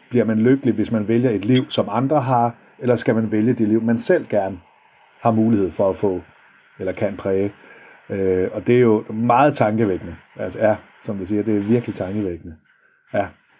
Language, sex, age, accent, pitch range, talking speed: Danish, male, 50-69, native, 105-120 Hz, 195 wpm